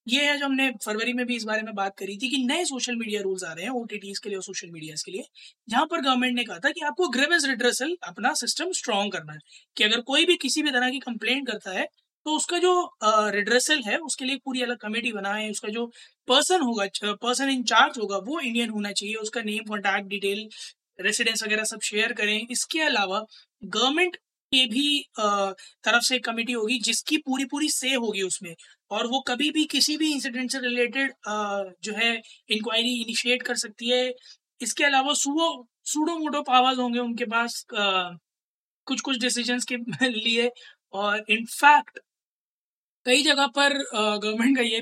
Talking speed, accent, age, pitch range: 185 wpm, native, 20-39, 215-270 Hz